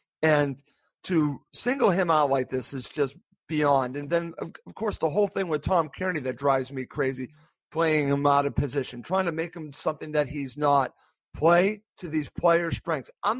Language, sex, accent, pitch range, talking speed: English, male, American, 145-180 Hz, 195 wpm